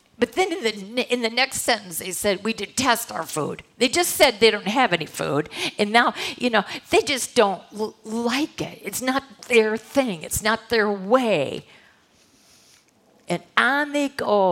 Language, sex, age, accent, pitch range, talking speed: English, female, 50-69, American, 205-265 Hz, 180 wpm